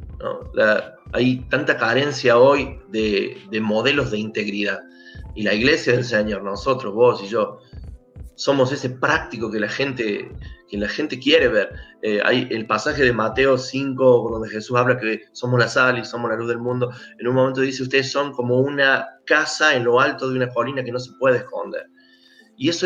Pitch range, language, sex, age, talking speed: 120-150 Hz, Spanish, male, 30-49, 190 wpm